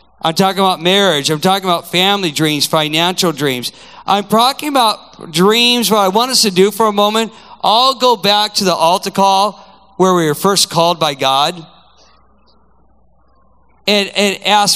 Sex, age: male, 50-69